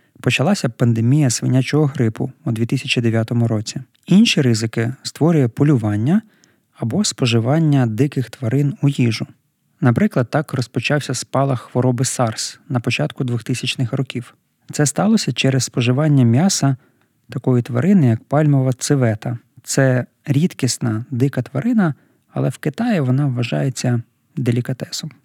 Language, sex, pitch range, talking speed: Ukrainian, male, 120-145 Hz, 110 wpm